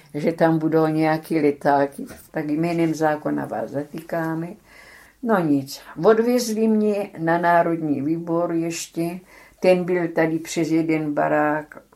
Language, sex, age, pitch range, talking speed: Czech, female, 60-79, 150-190 Hz, 120 wpm